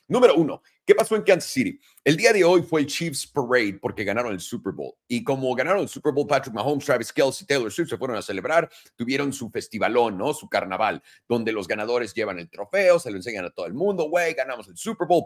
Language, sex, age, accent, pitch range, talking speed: Spanish, male, 40-59, Mexican, 115-165 Hz, 235 wpm